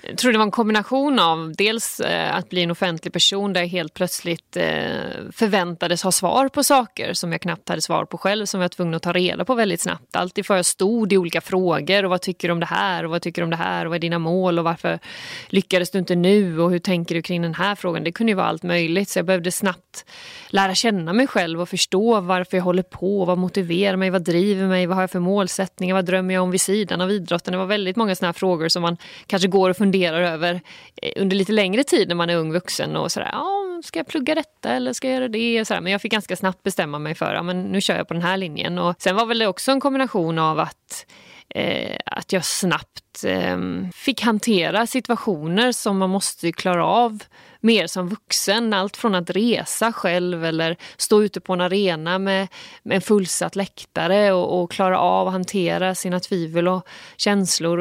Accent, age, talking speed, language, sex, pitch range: native, 30-49, 230 wpm, Swedish, female, 175-205 Hz